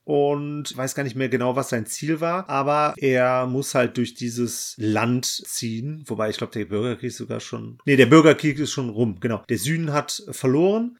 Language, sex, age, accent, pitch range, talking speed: German, male, 30-49, German, 125-155 Hz, 200 wpm